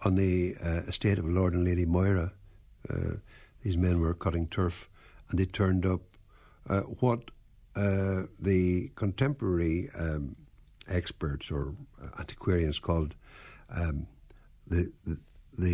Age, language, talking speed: 60-79, English, 120 wpm